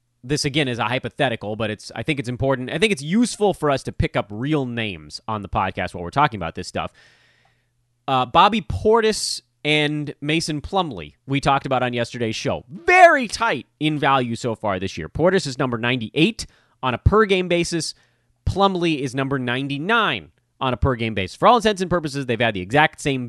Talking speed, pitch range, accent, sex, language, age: 200 wpm, 115-175 Hz, American, male, English, 30-49